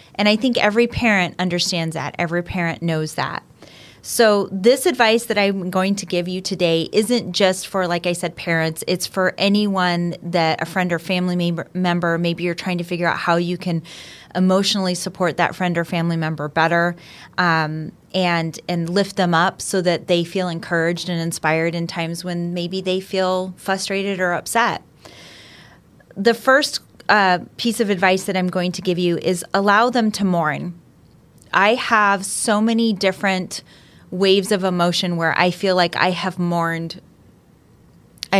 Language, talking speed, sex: English, 170 wpm, female